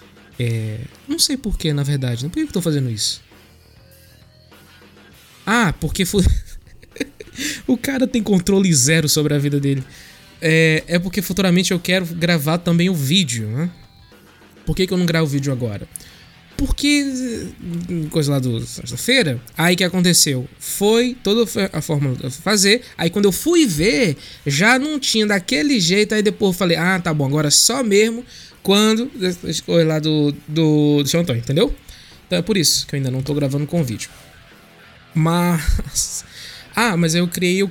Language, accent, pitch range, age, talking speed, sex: Portuguese, Brazilian, 135-190 Hz, 20-39, 175 wpm, male